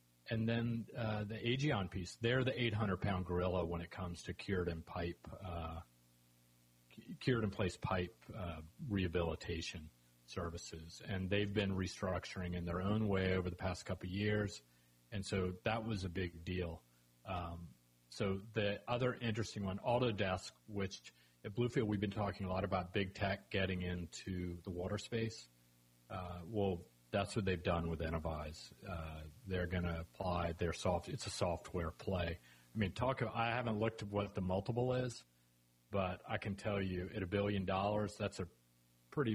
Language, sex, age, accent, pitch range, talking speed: English, male, 40-59, American, 85-105 Hz, 170 wpm